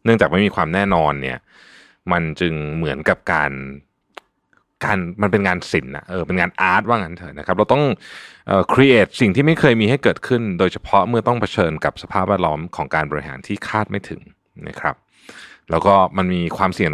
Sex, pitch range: male, 80-110 Hz